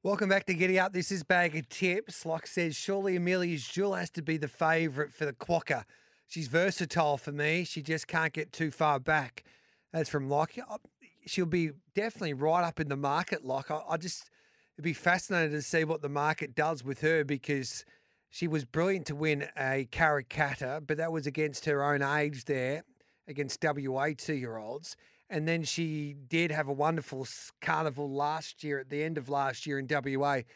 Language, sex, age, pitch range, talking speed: English, male, 30-49, 145-165 Hz, 190 wpm